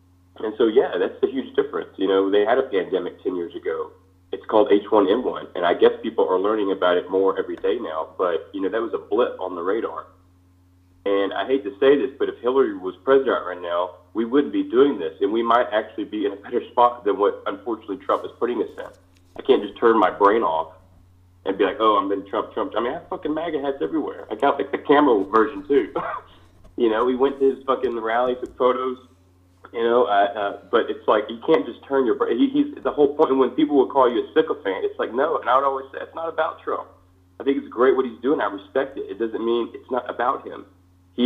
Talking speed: 250 wpm